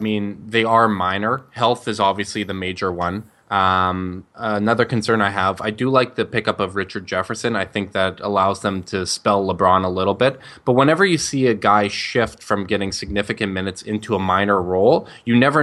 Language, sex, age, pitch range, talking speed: English, male, 20-39, 100-115 Hz, 200 wpm